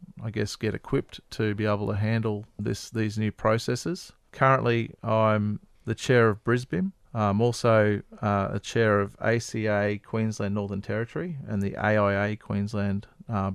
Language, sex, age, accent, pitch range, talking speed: English, male, 40-59, Australian, 105-115 Hz, 150 wpm